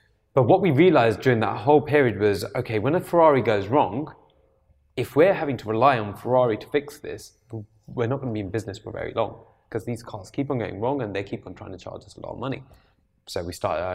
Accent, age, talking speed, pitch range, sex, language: British, 20-39, 250 wpm, 105-125 Hz, male, English